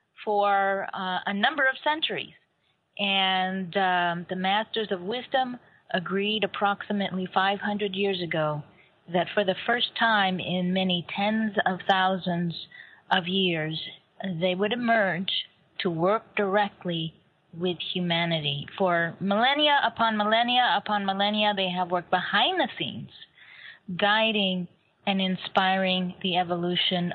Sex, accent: female, American